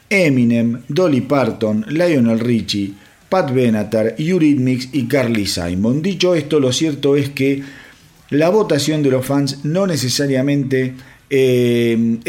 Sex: male